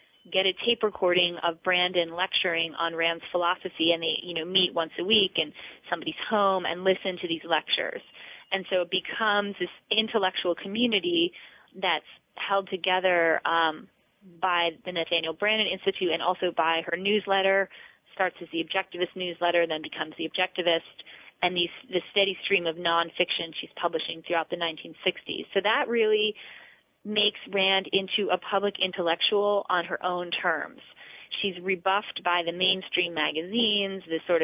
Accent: American